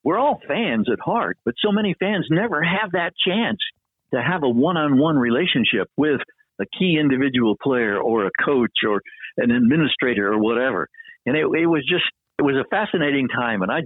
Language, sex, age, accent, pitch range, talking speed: English, male, 60-79, American, 140-220 Hz, 185 wpm